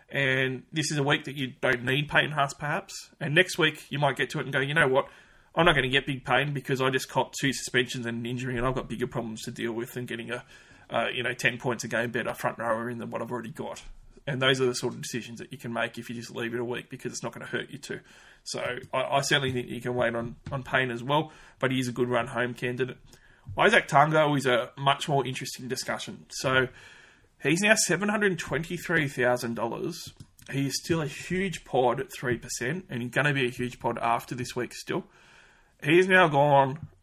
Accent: Australian